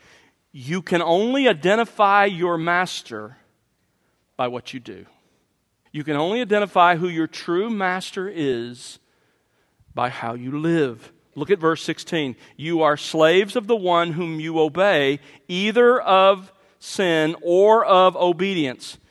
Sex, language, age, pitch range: male, English, 50-69, 155-220 Hz